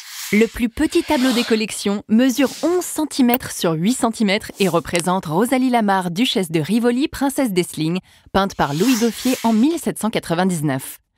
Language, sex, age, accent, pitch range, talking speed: French, female, 20-39, French, 170-255 Hz, 145 wpm